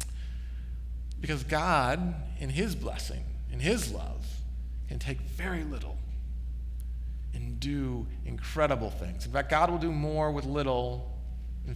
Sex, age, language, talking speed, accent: male, 40-59, English, 130 wpm, American